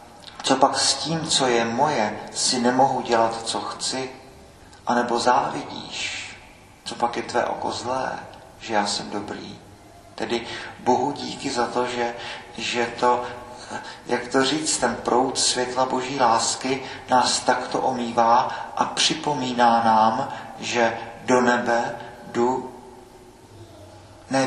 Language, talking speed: Czech, 125 wpm